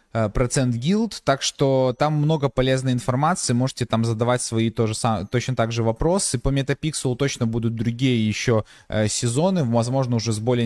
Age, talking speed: 20-39, 160 wpm